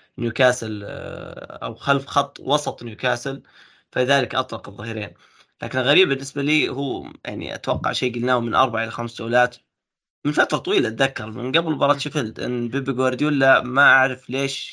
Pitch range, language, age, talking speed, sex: 115-135 Hz, Arabic, 20-39, 150 wpm, male